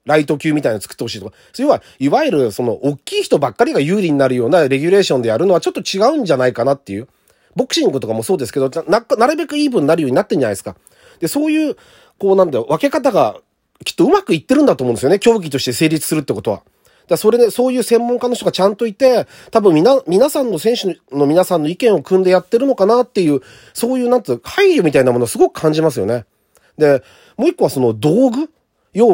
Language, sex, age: Japanese, male, 40-59